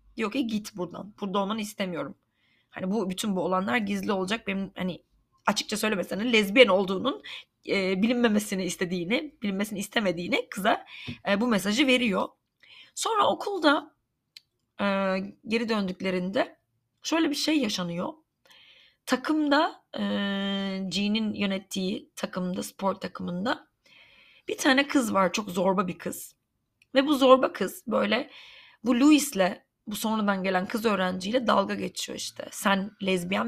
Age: 30-49